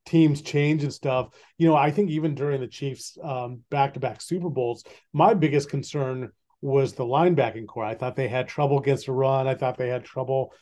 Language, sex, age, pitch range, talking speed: English, male, 40-59, 130-160 Hz, 205 wpm